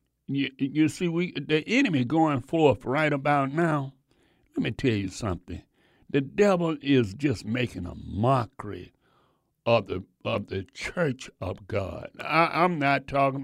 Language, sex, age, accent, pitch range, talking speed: English, male, 60-79, American, 125-180 Hz, 150 wpm